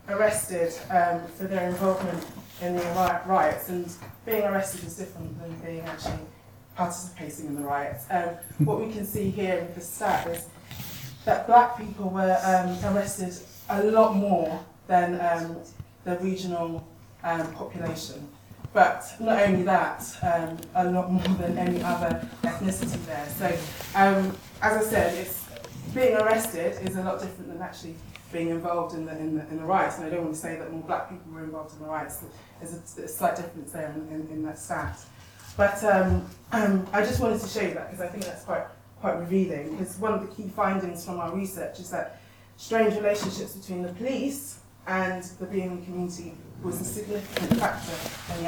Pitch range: 165-195 Hz